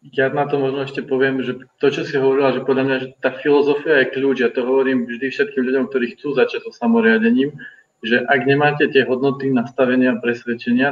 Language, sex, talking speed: Slovak, male, 210 wpm